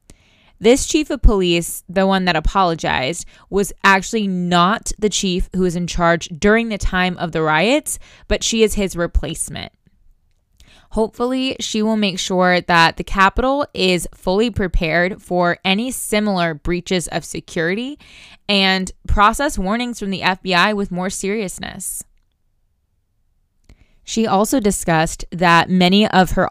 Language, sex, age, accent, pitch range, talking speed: English, female, 20-39, American, 170-205 Hz, 140 wpm